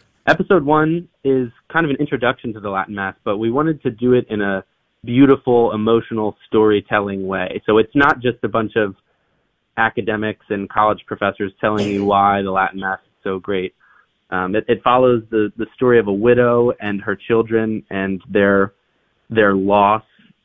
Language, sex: English, male